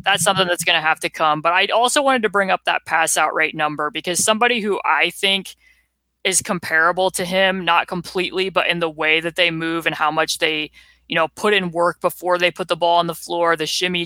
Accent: American